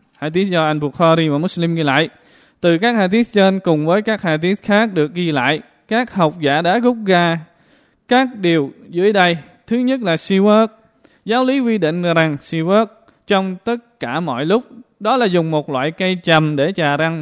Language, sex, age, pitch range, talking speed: Vietnamese, male, 20-39, 160-210 Hz, 200 wpm